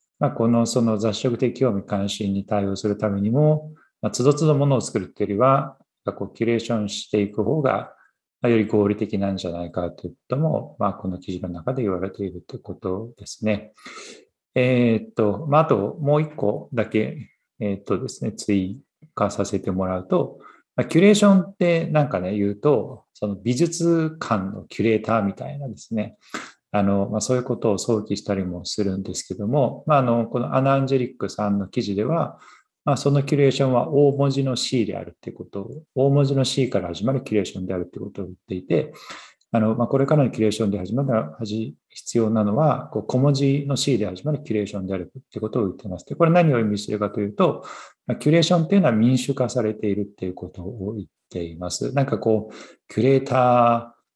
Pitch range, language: 100-135 Hz, English